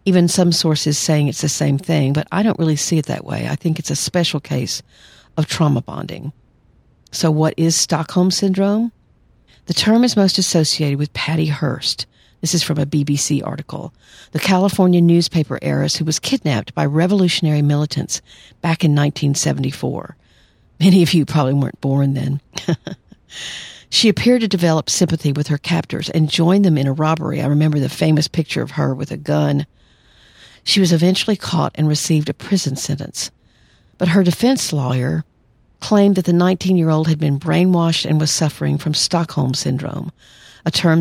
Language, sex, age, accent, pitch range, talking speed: English, female, 50-69, American, 145-170 Hz, 170 wpm